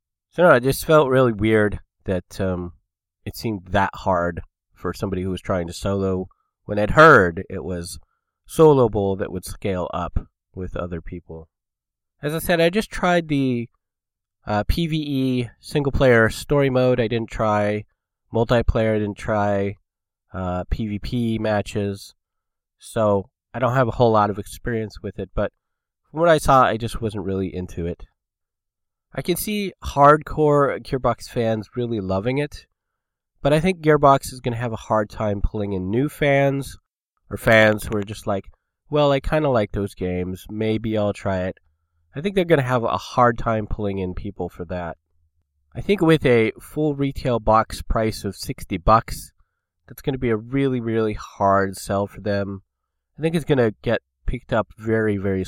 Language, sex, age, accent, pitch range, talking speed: English, male, 30-49, American, 95-125 Hz, 175 wpm